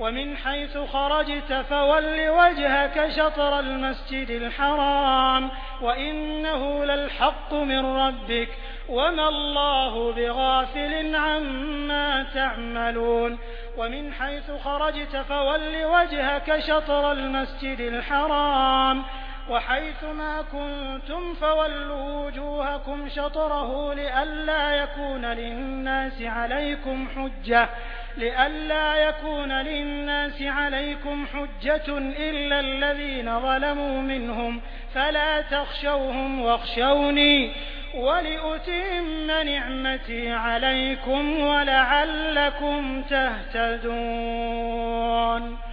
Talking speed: 70 wpm